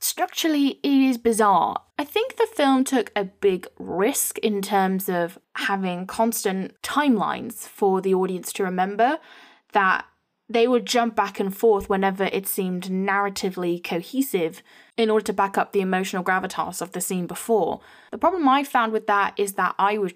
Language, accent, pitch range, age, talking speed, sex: English, British, 190-245 Hz, 10-29, 170 wpm, female